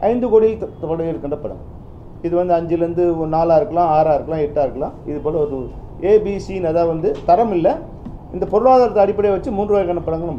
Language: Tamil